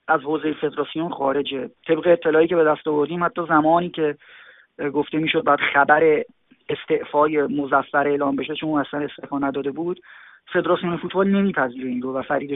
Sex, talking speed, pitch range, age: male, 160 wpm, 150-185 Hz, 30-49